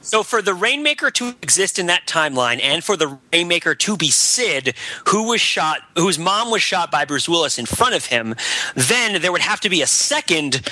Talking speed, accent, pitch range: 220 wpm, American, 155-215 Hz